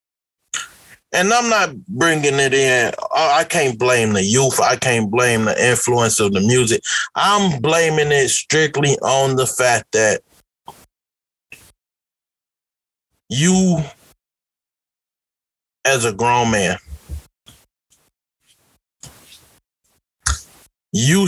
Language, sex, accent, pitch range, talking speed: English, male, American, 105-150 Hz, 95 wpm